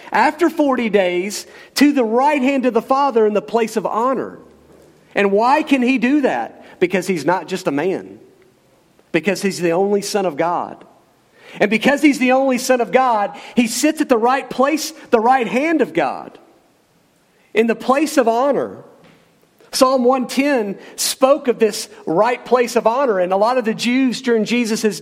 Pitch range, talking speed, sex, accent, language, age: 210-265 Hz, 180 wpm, male, American, English, 50-69